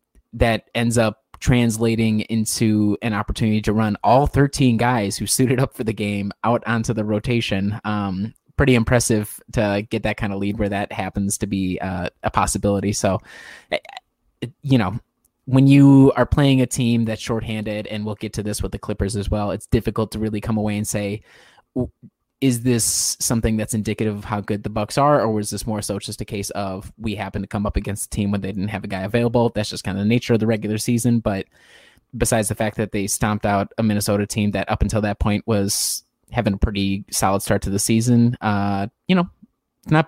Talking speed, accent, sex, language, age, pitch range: 215 wpm, American, male, English, 20-39, 100-120 Hz